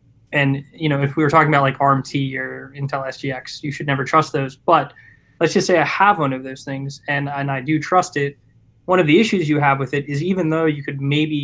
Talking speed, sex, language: 250 wpm, male, English